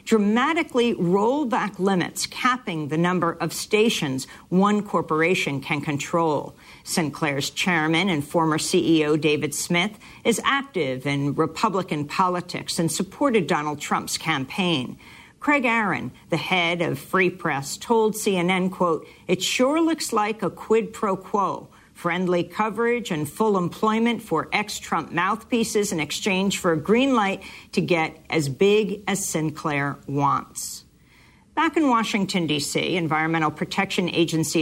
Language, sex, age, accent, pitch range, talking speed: English, female, 50-69, American, 165-220 Hz, 130 wpm